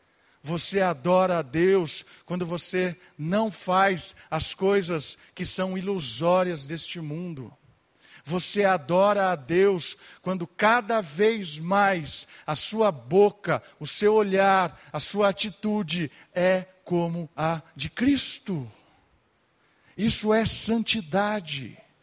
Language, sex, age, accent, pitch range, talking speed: Portuguese, male, 50-69, Brazilian, 180-225 Hz, 110 wpm